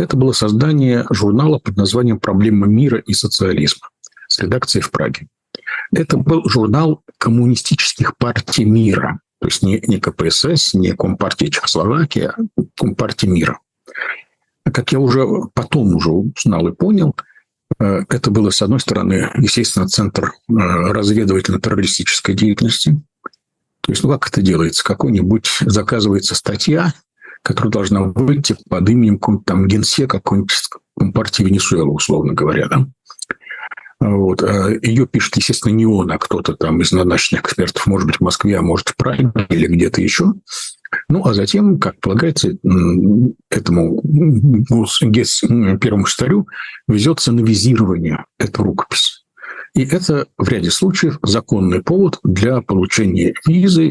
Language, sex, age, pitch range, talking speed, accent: Russian, male, 60-79, 100-145 Hz, 130 wpm, native